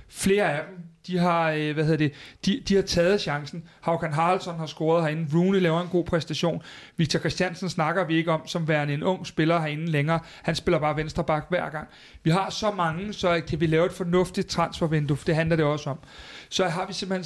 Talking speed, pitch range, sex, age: 225 wpm, 155-180 Hz, male, 30-49